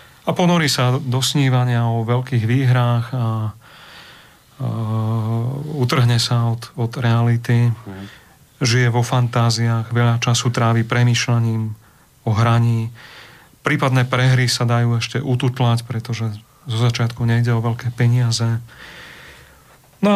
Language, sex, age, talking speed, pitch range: Slovak, male, 40-59, 115 wpm, 115-135 Hz